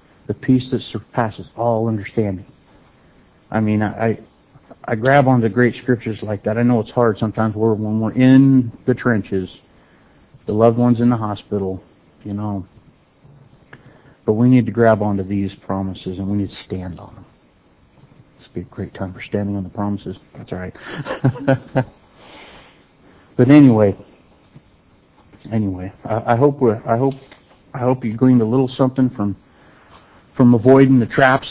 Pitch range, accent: 100-125 Hz, American